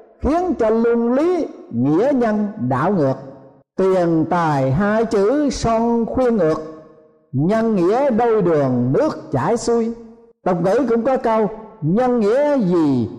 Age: 60-79